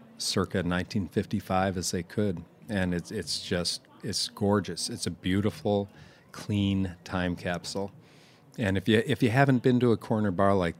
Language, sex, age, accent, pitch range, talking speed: English, male, 40-59, American, 90-105 Hz, 160 wpm